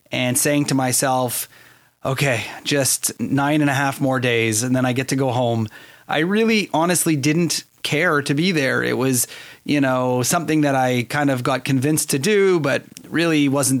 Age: 30-49